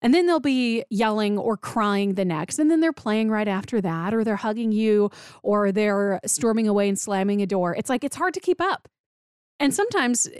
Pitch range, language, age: 195-270 Hz, English, 20-39